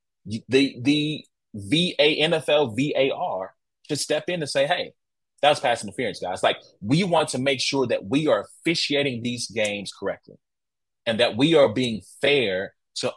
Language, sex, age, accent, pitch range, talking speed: English, male, 30-49, American, 110-150 Hz, 160 wpm